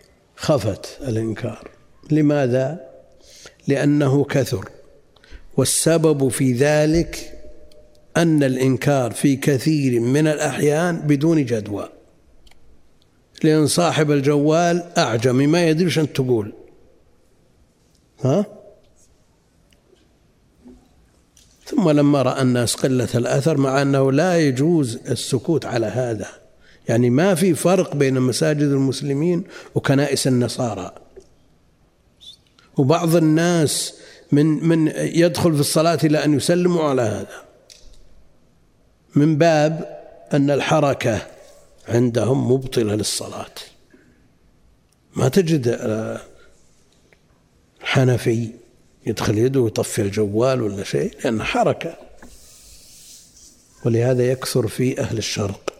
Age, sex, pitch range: 60-79, male, 125-155 Hz